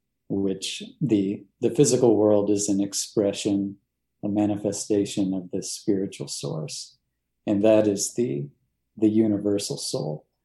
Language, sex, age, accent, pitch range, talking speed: English, male, 50-69, American, 100-110 Hz, 120 wpm